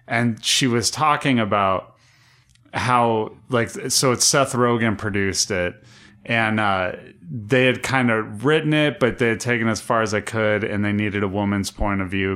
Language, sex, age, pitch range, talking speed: English, male, 30-49, 105-130 Hz, 190 wpm